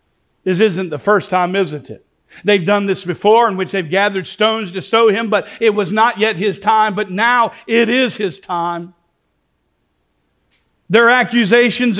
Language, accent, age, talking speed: English, American, 50-69, 170 wpm